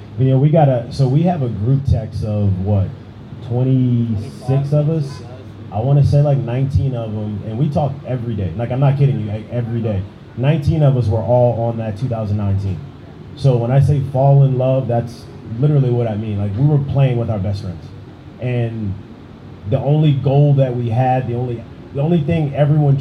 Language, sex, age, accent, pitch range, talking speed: English, male, 30-49, American, 115-140 Hz, 200 wpm